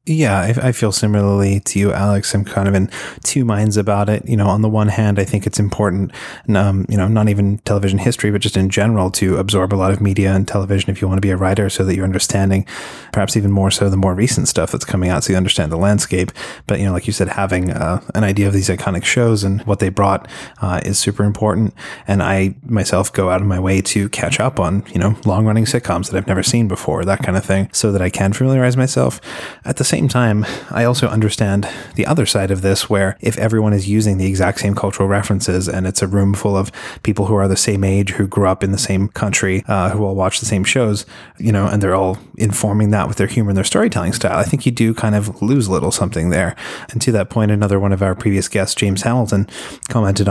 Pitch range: 95-110 Hz